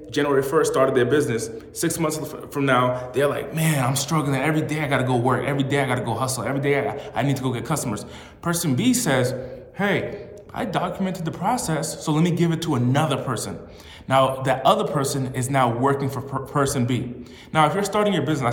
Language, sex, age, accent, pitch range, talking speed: English, male, 30-49, American, 125-155 Hz, 220 wpm